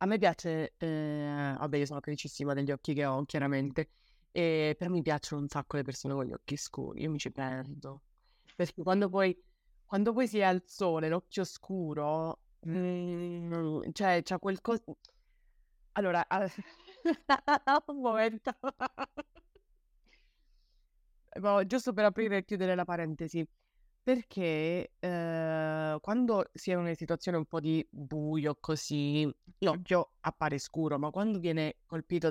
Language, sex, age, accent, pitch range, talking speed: Italian, female, 30-49, native, 155-195 Hz, 140 wpm